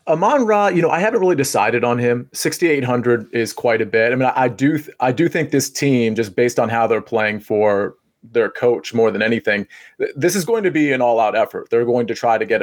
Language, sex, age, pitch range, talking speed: English, male, 30-49, 120-150 Hz, 250 wpm